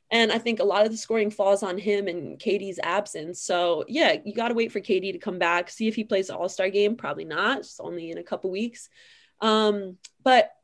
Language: English